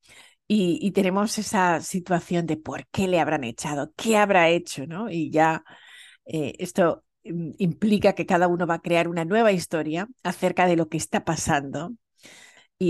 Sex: female